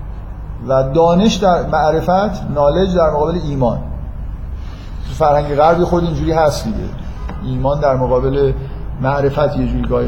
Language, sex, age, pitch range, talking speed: Persian, male, 50-69, 130-185 Hz, 125 wpm